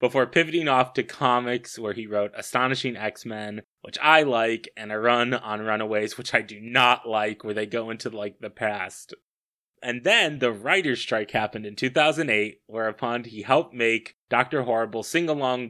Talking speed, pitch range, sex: 170 wpm, 115-140 Hz, male